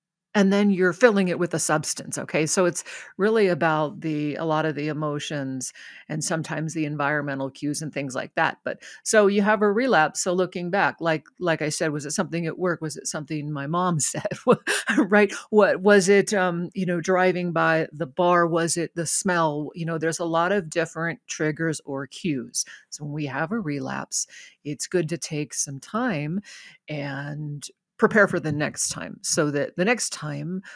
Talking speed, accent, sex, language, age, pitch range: 195 wpm, American, female, English, 50-69, 150-190 Hz